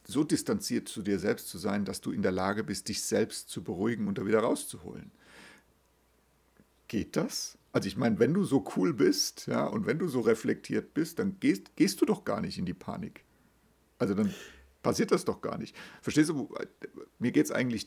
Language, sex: German, male